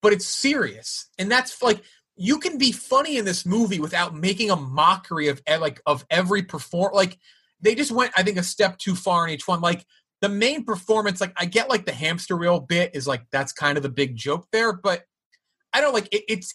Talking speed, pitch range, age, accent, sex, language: 220 wpm, 150-215 Hz, 30-49, American, male, English